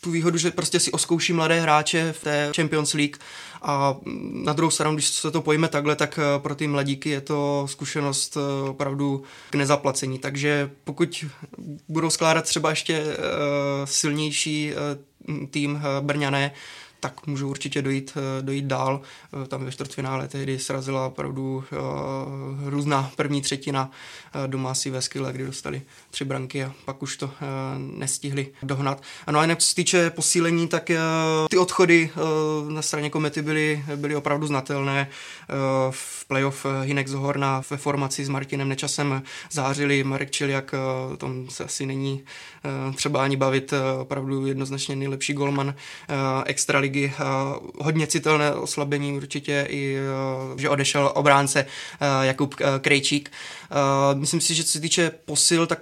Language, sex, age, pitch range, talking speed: Czech, male, 20-39, 135-150 Hz, 150 wpm